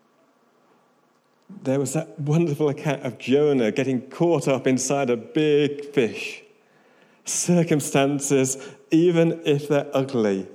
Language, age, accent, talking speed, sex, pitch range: English, 40-59, British, 110 wpm, male, 120-170 Hz